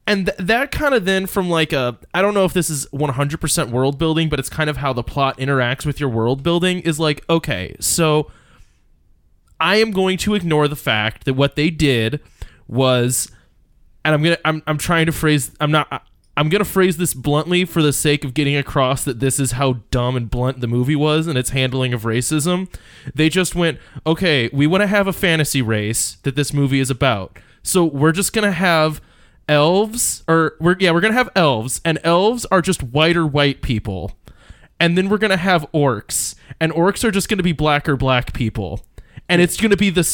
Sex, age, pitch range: male, 20-39, 130-180 Hz